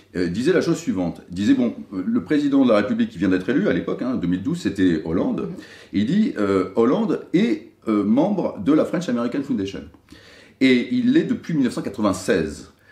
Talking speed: 190 wpm